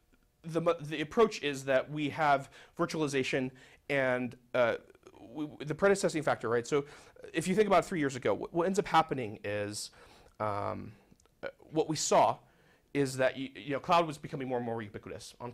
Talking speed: 180 wpm